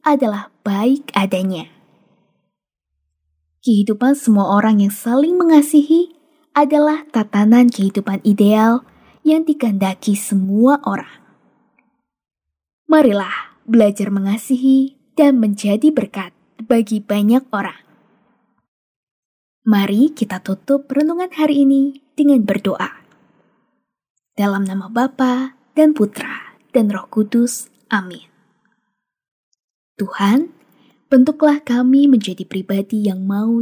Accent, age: native, 20-39